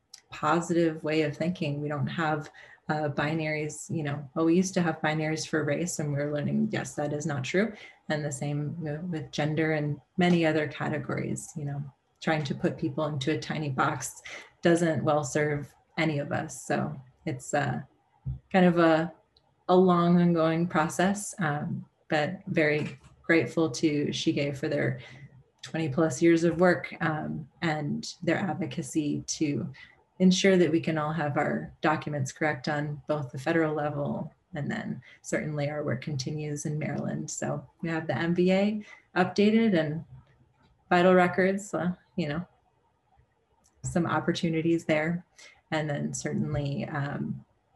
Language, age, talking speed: English, 20-39, 155 wpm